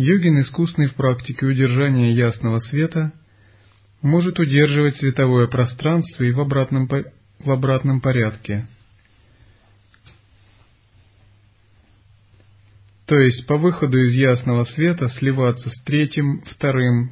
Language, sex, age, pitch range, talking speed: Russian, male, 30-49, 105-140 Hz, 95 wpm